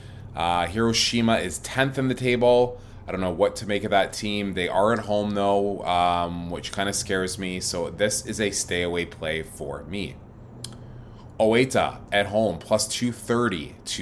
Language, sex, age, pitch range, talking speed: English, male, 20-39, 90-110 Hz, 170 wpm